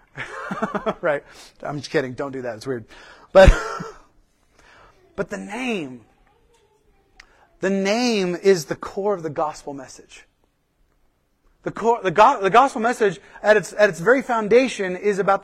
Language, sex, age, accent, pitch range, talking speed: English, male, 30-49, American, 175-230 Hz, 145 wpm